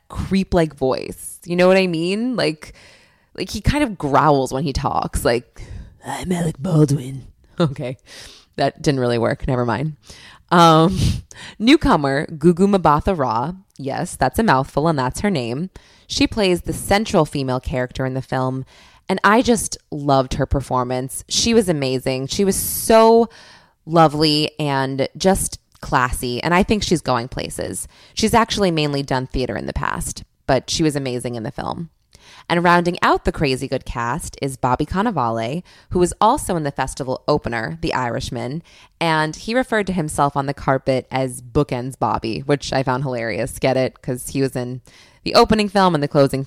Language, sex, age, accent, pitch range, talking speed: English, female, 20-39, American, 130-180 Hz, 170 wpm